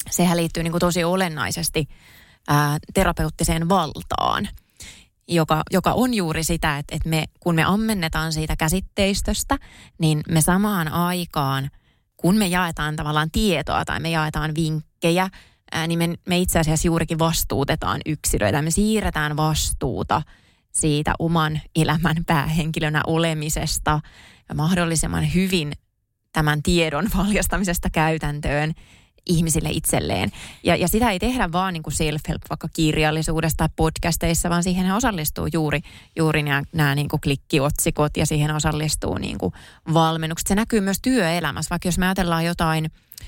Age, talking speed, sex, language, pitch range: 20-39, 130 wpm, female, Finnish, 155-175 Hz